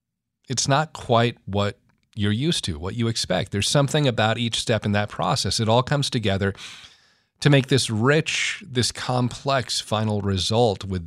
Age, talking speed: 40-59, 170 wpm